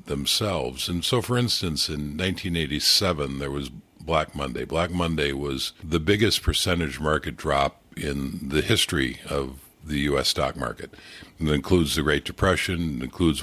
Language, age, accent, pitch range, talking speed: English, 50-69, American, 70-90 Hz, 150 wpm